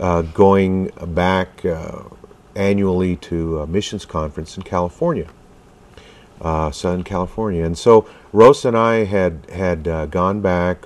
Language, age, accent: English, 50-69, American